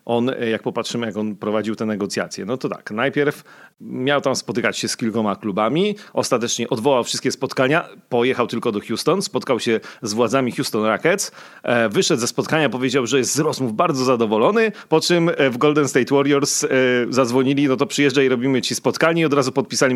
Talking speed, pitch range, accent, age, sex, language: 180 wpm, 110-140 Hz, native, 40-59, male, Polish